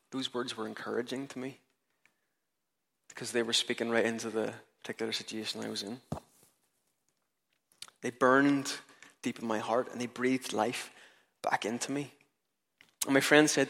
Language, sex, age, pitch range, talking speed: English, male, 20-39, 120-145 Hz, 155 wpm